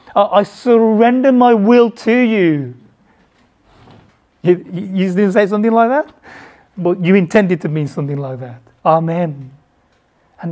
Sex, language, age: male, English, 30-49